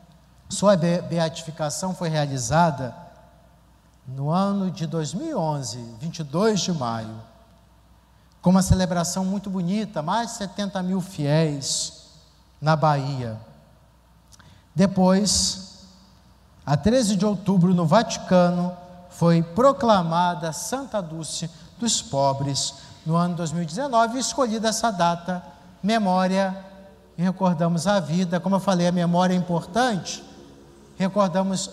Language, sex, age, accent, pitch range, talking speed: Portuguese, male, 50-69, Brazilian, 155-200 Hz, 105 wpm